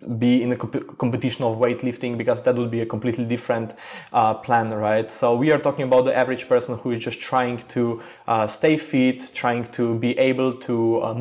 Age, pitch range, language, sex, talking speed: 20-39, 115-130 Hz, English, male, 210 wpm